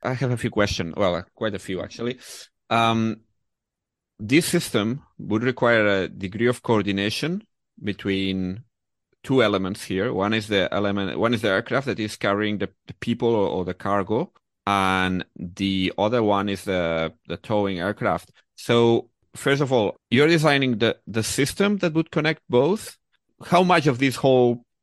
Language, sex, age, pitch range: English, male, 30-49, 100-125 Hz